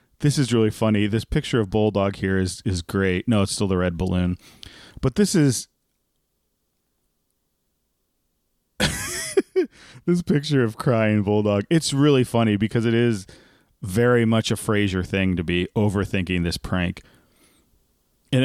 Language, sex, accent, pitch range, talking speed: English, male, American, 95-130 Hz, 140 wpm